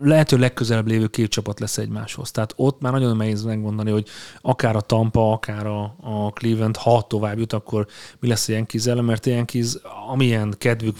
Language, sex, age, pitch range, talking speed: Hungarian, male, 30-49, 105-125 Hz, 190 wpm